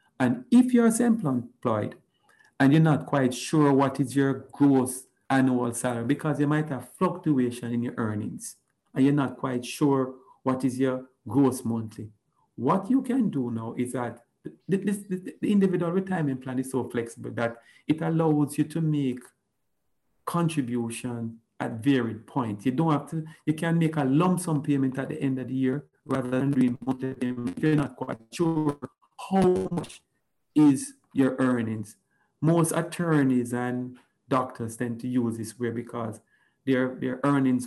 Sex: male